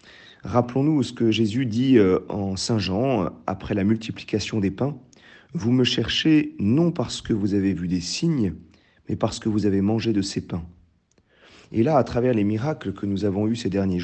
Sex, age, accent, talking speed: male, 40-59, French, 190 wpm